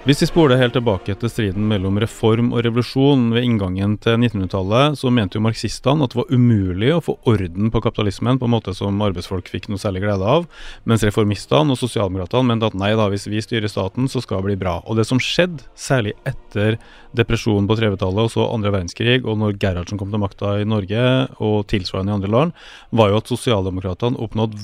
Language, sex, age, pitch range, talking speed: English, male, 30-49, 100-125 Hz, 205 wpm